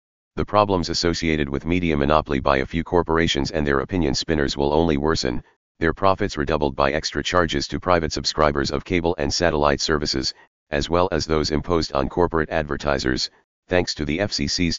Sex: male